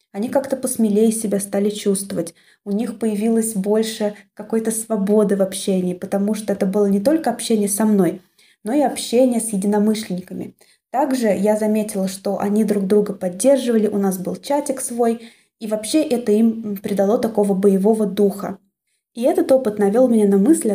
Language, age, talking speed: Russian, 20-39, 160 wpm